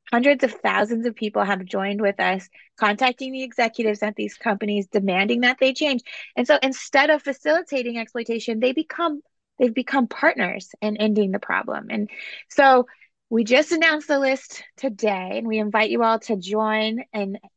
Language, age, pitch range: English, 20-39, 210-275 Hz